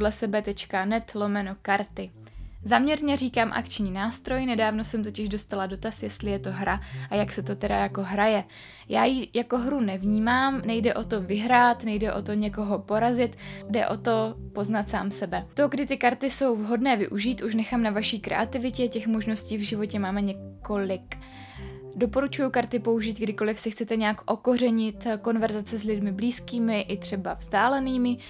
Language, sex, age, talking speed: Czech, female, 20-39, 160 wpm